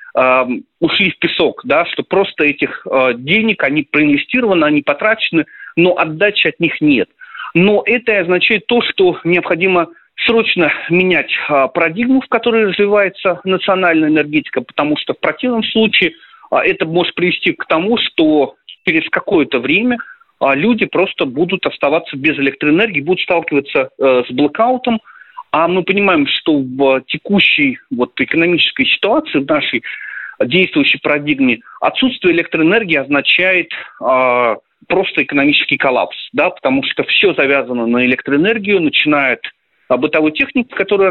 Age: 40-59